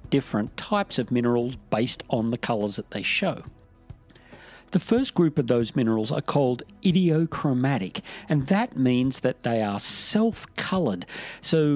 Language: English